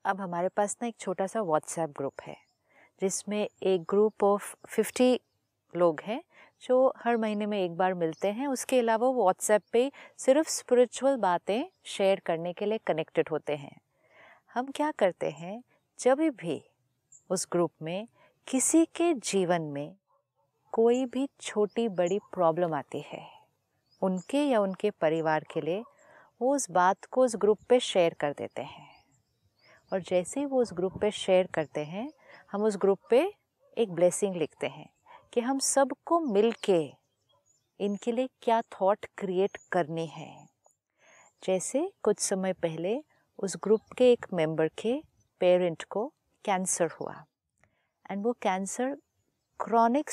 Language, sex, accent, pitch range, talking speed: Hindi, female, native, 180-245 Hz, 150 wpm